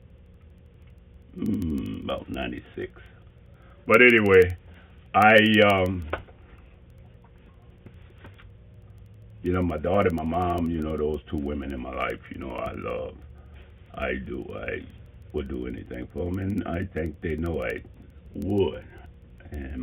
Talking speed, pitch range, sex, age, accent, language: 125 wpm, 80-95 Hz, male, 60-79, American, English